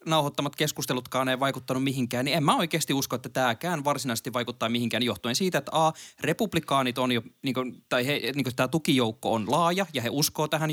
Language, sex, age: Finnish, male, 20-39